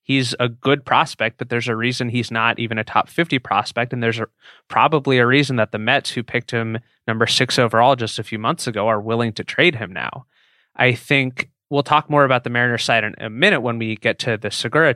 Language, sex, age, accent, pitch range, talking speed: English, male, 20-39, American, 115-135 Hz, 235 wpm